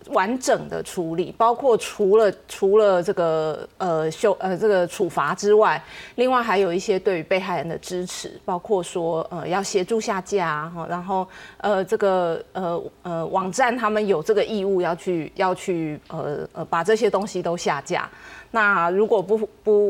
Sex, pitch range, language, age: female, 170-220 Hz, Chinese, 30-49